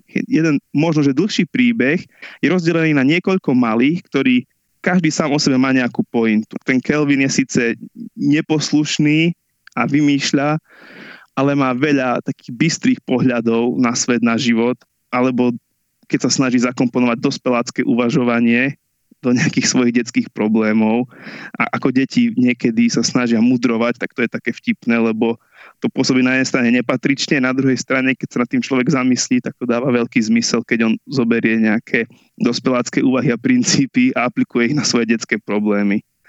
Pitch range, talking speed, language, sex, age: 120-150 Hz, 155 wpm, Slovak, male, 20-39